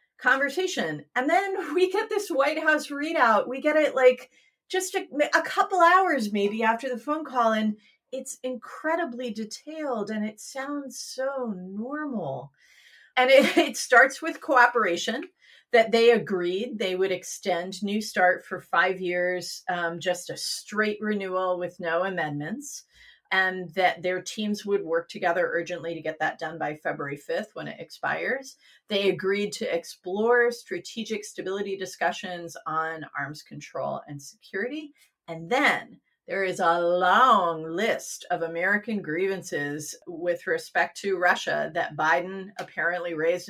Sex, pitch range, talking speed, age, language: female, 180-255 Hz, 145 wpm, 30-49, English